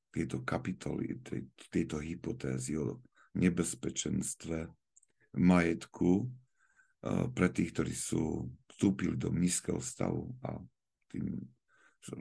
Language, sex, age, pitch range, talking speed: Slovak, male, 50-69, 75-100 Hz, 100 wpm